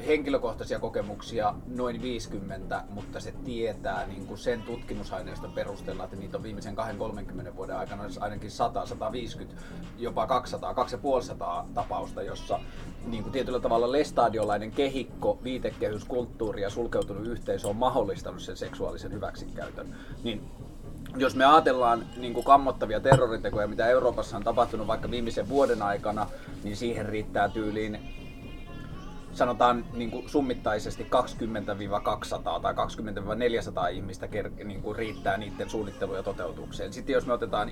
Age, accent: 20-39, native